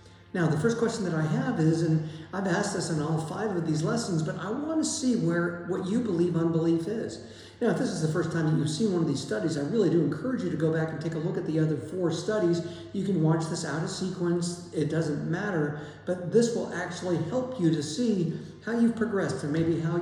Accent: American